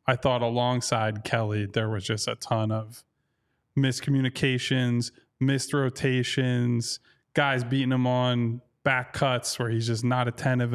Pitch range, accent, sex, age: 115-135 Hz, American, male, 20-39